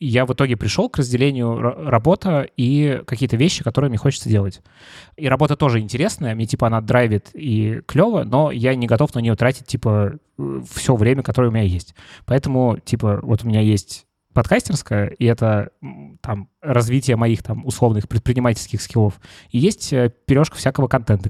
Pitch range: 105-130 Hz